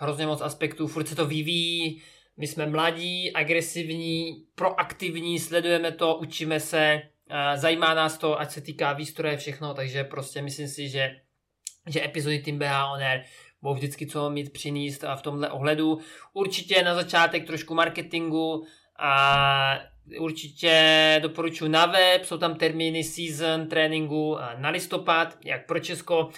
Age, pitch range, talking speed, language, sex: 20-39, 145-160 Hz, 140 wpm, Czech, male